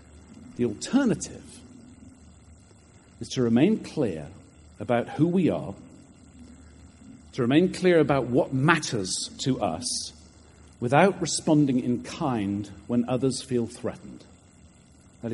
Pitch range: 100-140 Hz